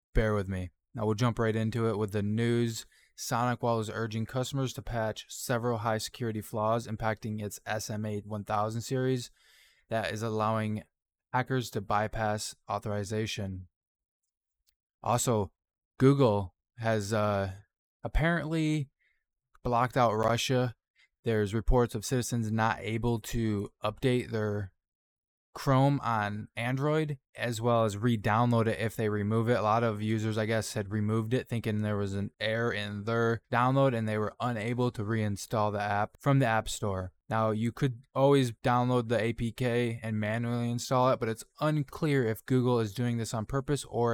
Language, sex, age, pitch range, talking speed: English, male, 20-39, 105-120 Hz, 155 wpm